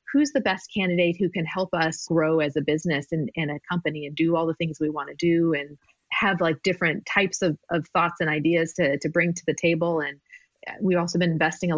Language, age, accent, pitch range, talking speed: English, 30-49, American, 155-190 Hz, 240 wpm